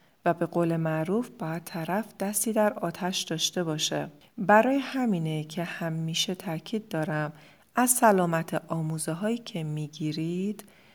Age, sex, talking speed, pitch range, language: 40-59, female, 125 wpm, 155-195 Hz, Persian